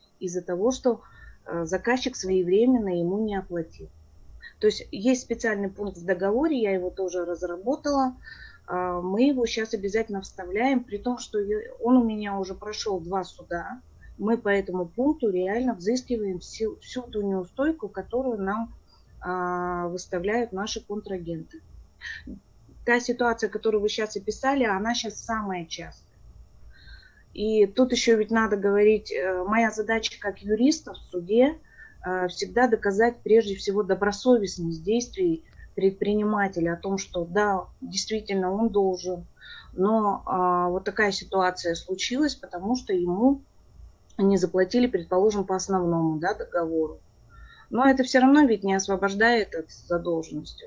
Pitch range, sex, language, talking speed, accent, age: 185-230 Hz, female, Russian, 130 wpm, native, 20-39